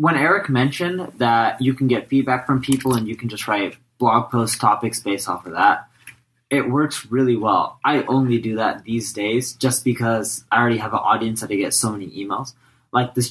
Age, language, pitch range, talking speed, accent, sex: 20-39, English, 105-130 Hz, 210 wpm, American, male